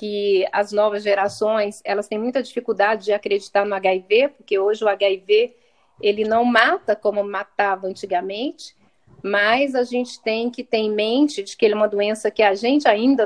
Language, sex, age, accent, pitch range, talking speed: Portuguese, female, 40-59, Brazilian, 200-255 Hz, 170 wpm